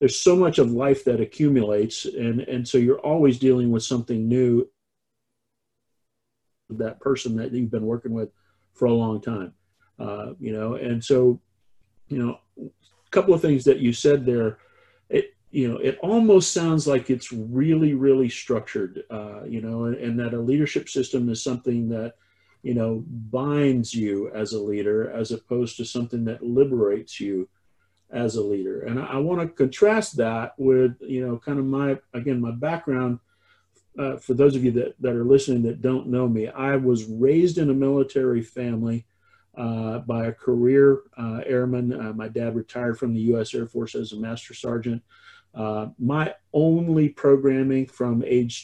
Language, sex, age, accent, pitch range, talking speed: English, male, 40-59, American, 115-135 Hz, 175 wpm